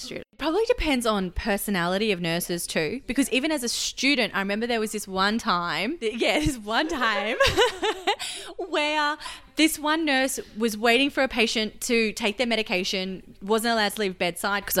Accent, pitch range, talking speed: Australian, 200-260 Hz, 170 wpm